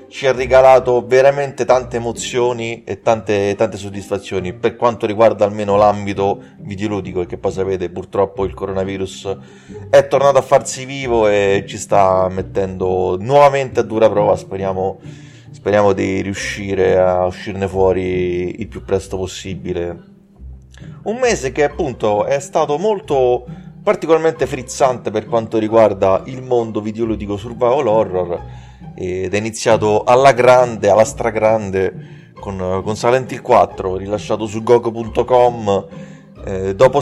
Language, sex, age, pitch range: Italian, male, 30-49, 100-130 Hz